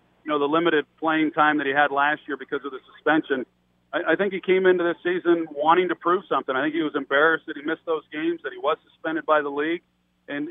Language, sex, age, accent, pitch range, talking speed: English, male, 40-59, American, 140-170 Hz, 255 wpm